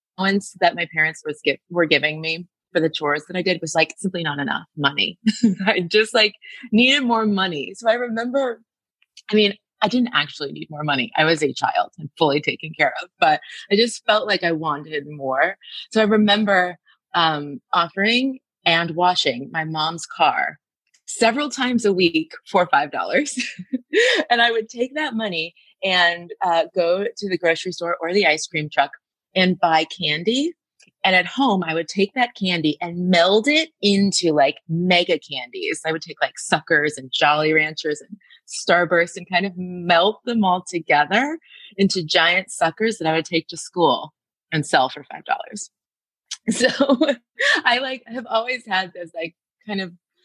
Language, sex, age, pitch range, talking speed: English, female, 30-49, 165-225 Hz, 175 wpm